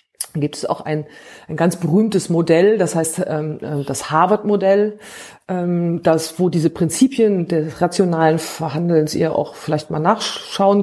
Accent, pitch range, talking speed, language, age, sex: German, 170-230 Hz, 150 wpm, German, 40-59, female